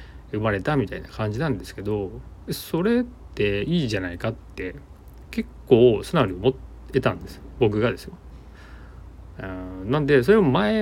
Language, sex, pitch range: Japanese, male, 95-130 Hz